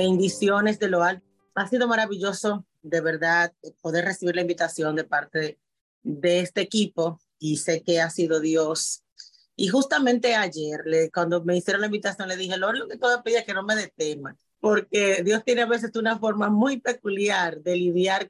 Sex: female